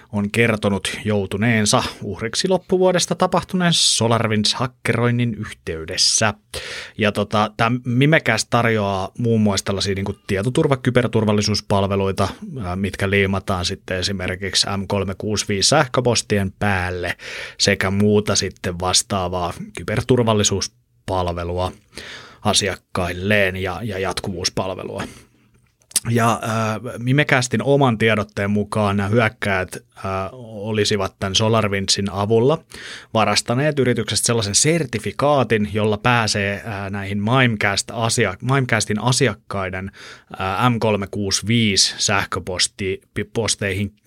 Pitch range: 100-115 Hz